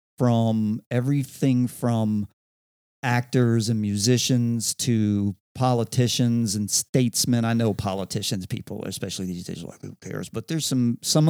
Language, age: English, 40-59